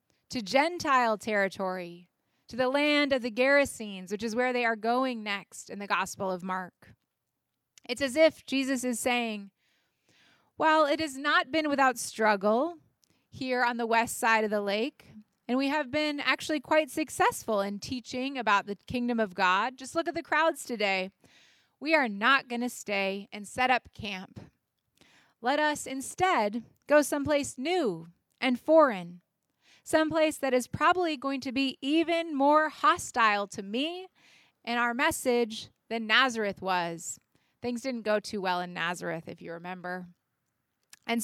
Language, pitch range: English, 200-275 Hz